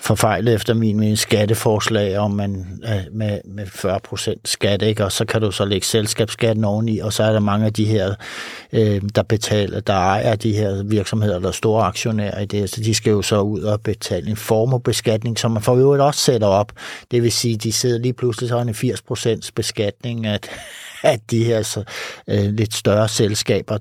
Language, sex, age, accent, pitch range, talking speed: Danish, male, 60-79, native, 105-125 Hz, 200 wpm